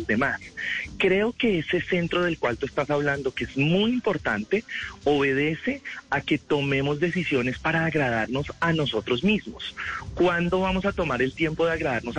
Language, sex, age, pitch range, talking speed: Spanish, male, 30-49, 135-175 Hz, 160 wpm